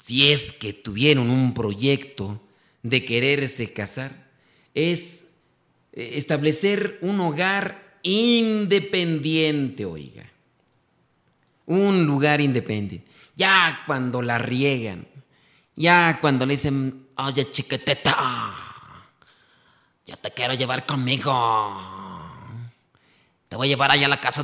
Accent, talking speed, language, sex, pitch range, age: Mexican, 100 wpm, Spanish, male, 130-160 Hz, 40-59